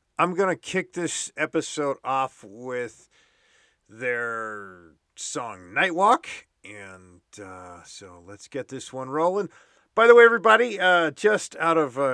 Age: 40-59